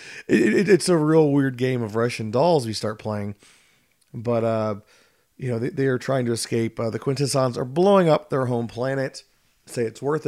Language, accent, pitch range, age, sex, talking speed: English, American, 110-135 Hz, 40-59, male, 205 wpm